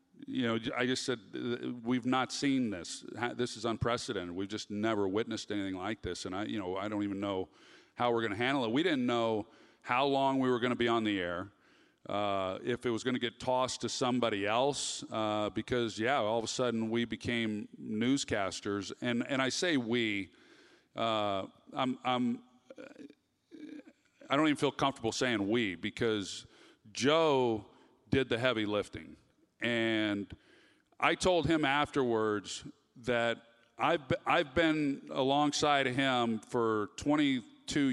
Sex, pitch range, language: male, 110-135 Hz, English